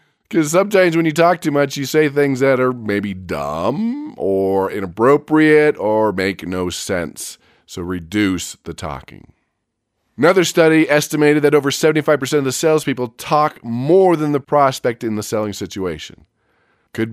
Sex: male